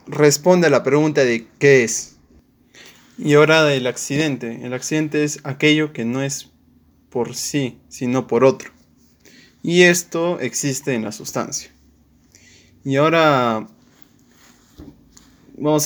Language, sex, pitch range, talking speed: Spanish, male, 120-150 Hz, 120 wpm